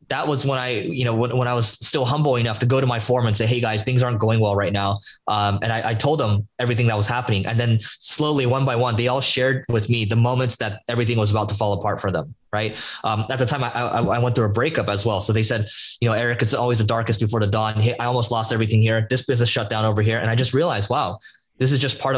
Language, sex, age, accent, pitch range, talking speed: Portuguese, male, 20-39, American, 110-125 Hz, 290 wpm